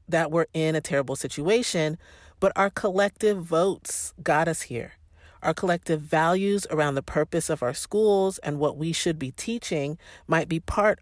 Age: 40-59